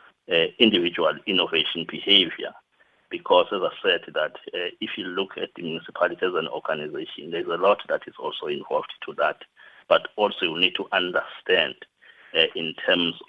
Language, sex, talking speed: English, male, 165 wpm